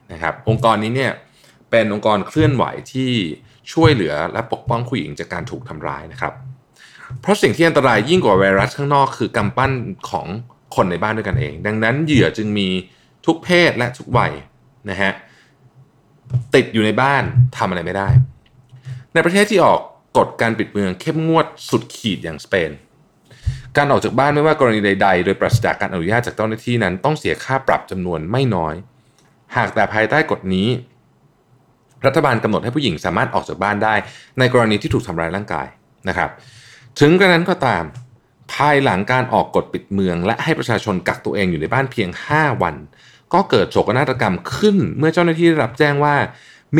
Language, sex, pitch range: Thai, male, 105-140 Hz